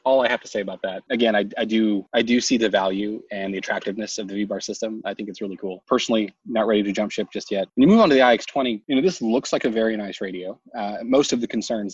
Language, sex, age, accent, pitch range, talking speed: English, male, 20-39, American, 95-115 Hz, 285 wpm